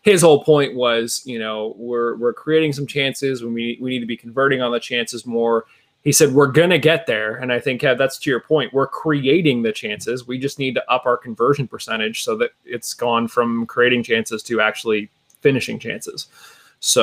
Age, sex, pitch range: 20-39, male, 115-145 Hz